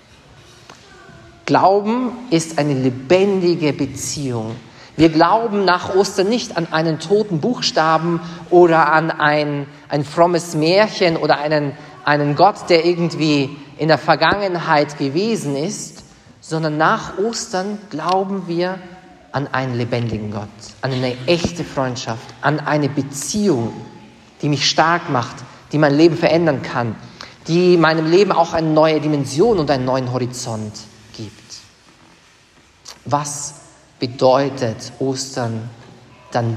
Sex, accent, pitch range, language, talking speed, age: male, German, 130-170 Hz, English, 120 wpm, 40-59